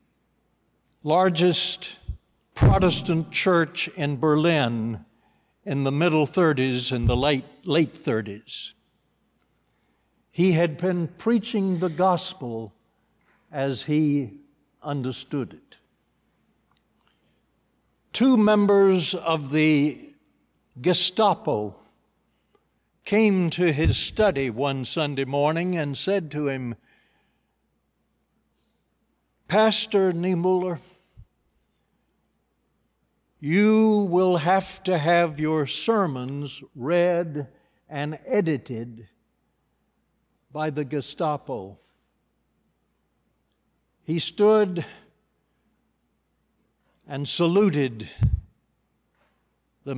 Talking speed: 70 wpm